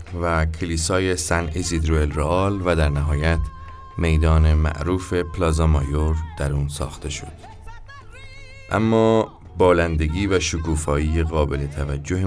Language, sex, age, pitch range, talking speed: Persian, male, 30-49, 75-85 Hz, 110 wpm